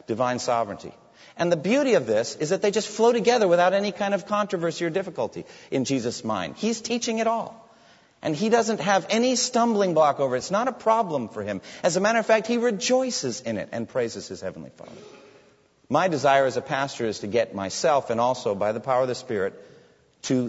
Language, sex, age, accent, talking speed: English, male, 40-59, American, 215 wpm